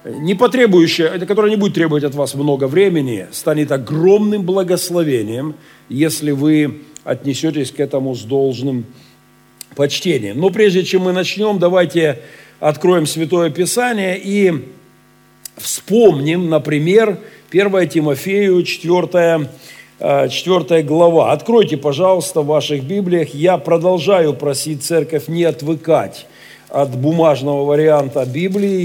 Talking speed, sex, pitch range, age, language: 110 wpm, male, 145-180 Hz, 50-69, Russian